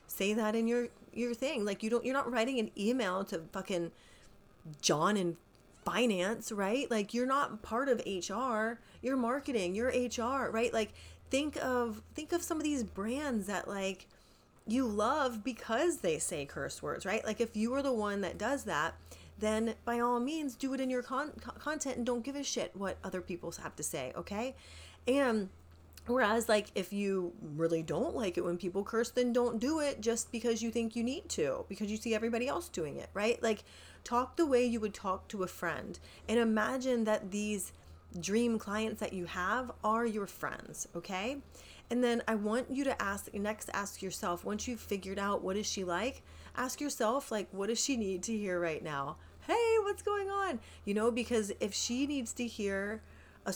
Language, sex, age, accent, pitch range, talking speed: English, female, 30-49, American, 185-245 Hz, 200 wpm